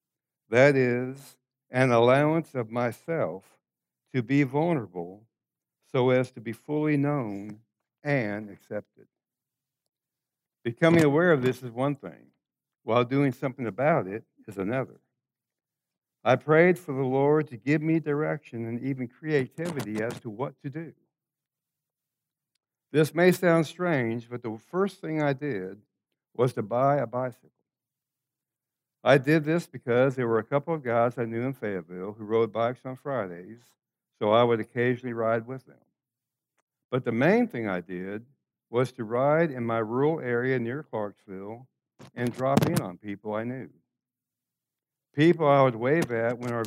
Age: 60-79